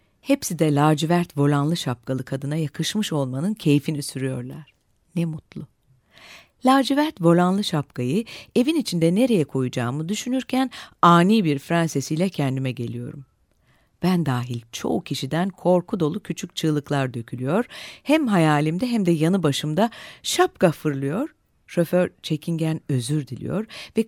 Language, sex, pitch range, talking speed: Turkish, female, 145-205 Hz, 115 wpm